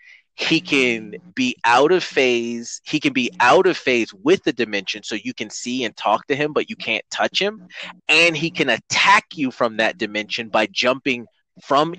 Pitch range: 115-180 Hz